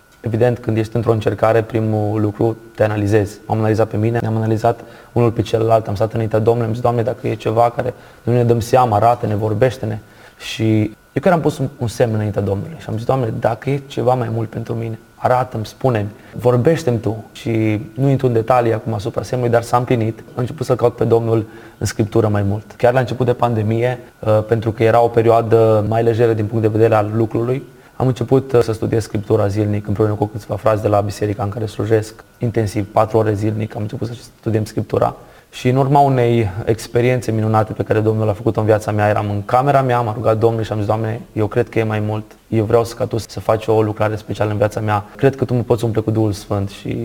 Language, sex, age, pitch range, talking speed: Romanian, male, 20-39, 110-120 Hz, 225 wpm